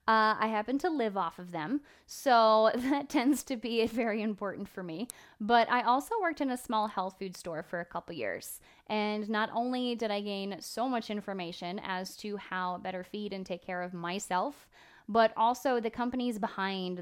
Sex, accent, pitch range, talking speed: female, American, 190-230 Hz, 195 wpm